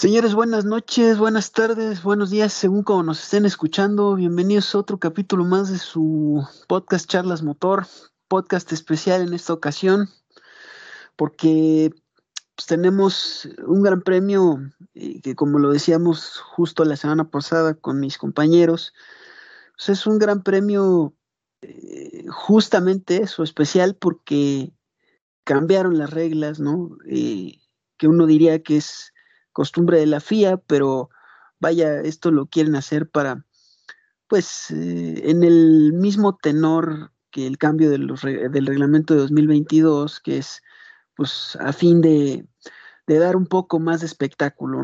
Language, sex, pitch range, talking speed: Spanish, male, 150-200 Hz, 140 wpm